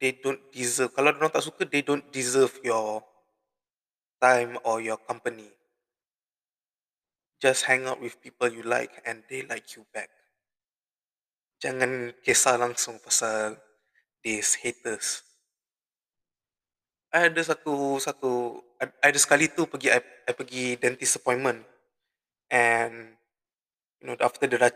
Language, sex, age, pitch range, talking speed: Malay, male, 20-39, 115-130 Hz, 125 wpm